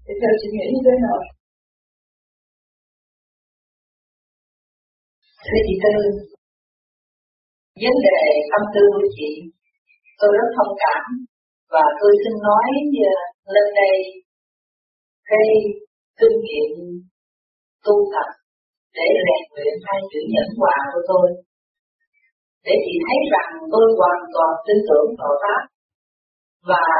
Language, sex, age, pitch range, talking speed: Vietnamese, female, 40-59, 190-285 Hz, 110 wpm